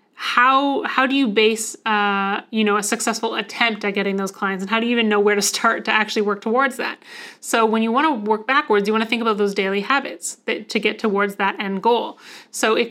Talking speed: 245 wpm